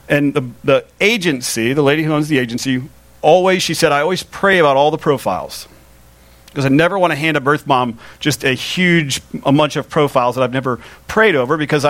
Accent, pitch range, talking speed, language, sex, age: American, 130-155 Hz, 210 wpm, English, male, 40-59